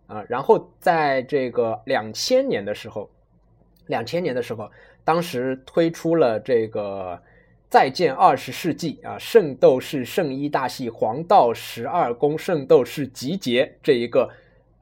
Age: 20-39